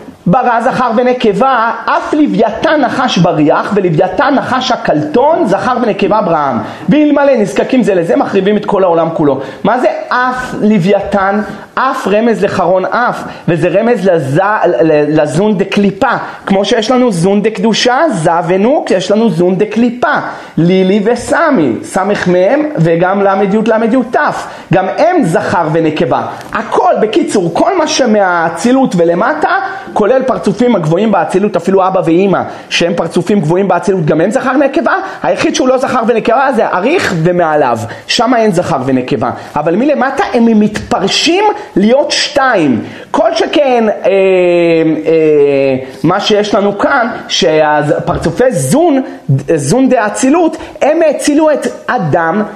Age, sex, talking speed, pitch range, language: 40-59, male, 130 wpm, 175-255 Hz, Hebrew